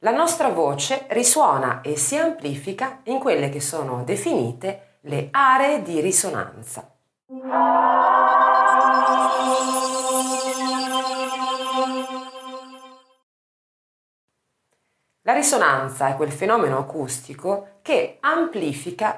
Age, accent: 40-59, native